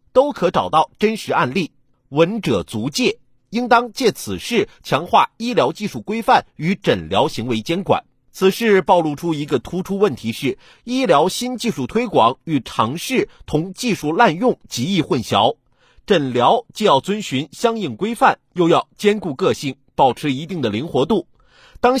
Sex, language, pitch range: male, Chinese, 155-235 Hz